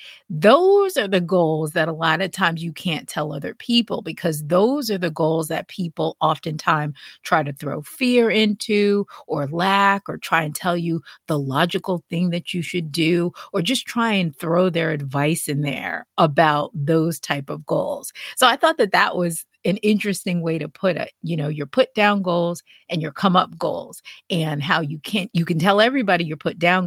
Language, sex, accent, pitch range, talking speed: English, female, American, 160-205 Hz, 195 wpm